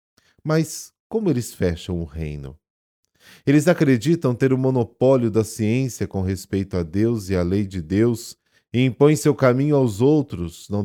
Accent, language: Brazilian, Portuguese